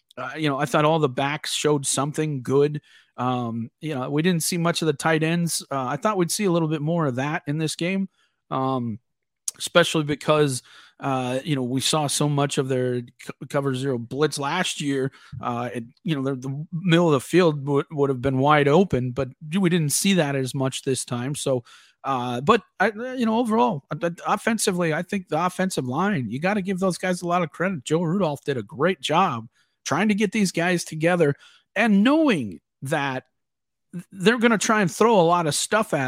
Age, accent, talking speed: 40-59, American, 210 wpm